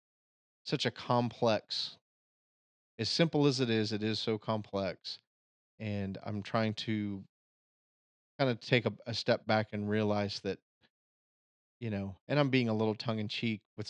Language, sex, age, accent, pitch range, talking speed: English, male, 30-49, American, 100-110 Hz, 160 wpm